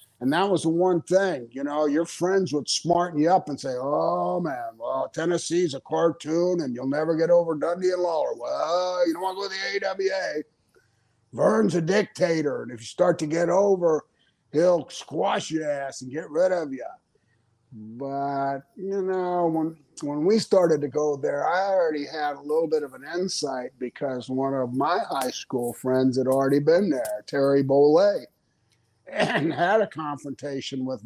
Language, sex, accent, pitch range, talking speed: English, male, American, 140-180 Hz, 185 wpm